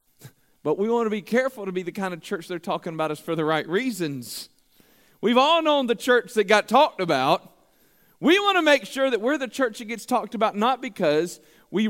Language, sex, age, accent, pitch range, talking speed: English, male, 40-59, American, 205-270 Hz, 225 wpm